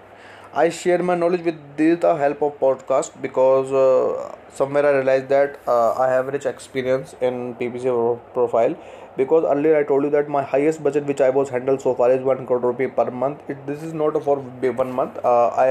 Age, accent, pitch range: 20-39, native, 125-150 Hz